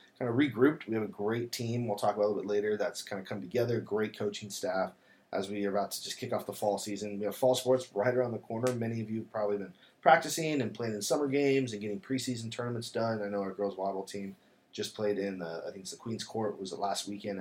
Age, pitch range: 20-39, 100-125 Hz